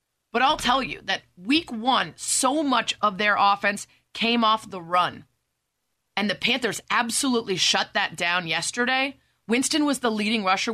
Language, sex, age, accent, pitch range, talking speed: English, female, 30-49, American, 180-245 Hz, 160 wpm